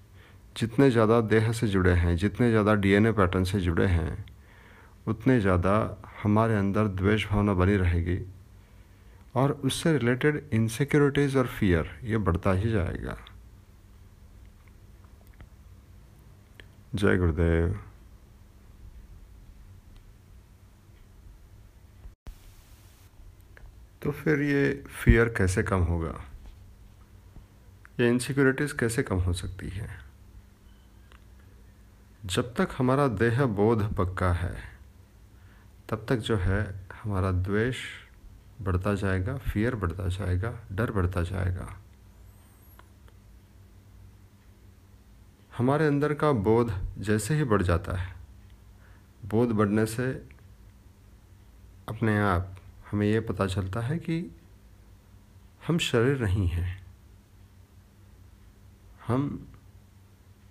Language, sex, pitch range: Hindi, male, 95-110 Hz